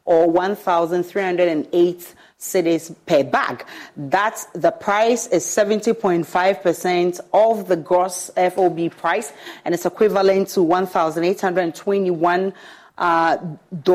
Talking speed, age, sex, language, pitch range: 85 wpm, 40-59, female, English, 170-205 Hz